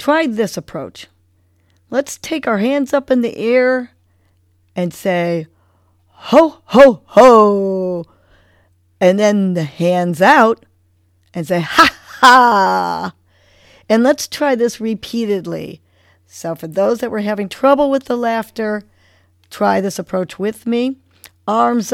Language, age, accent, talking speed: English, 50-69, American, 125 wpm